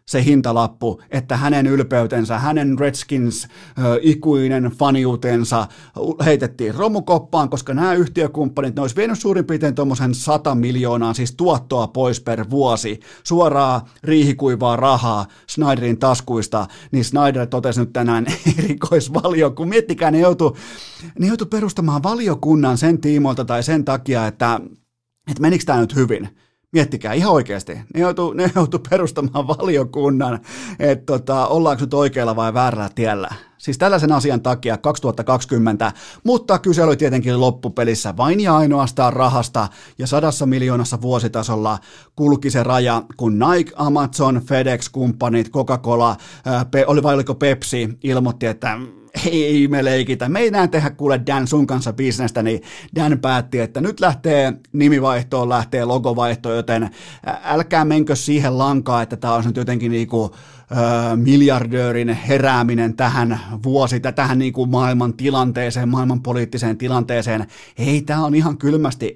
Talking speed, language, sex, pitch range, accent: 135 wpm, Finnish, male, 120-150 Hz, native